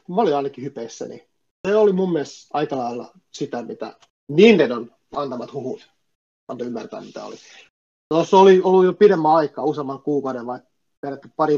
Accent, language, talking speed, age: native, Finnish, 150 wpm, 30-49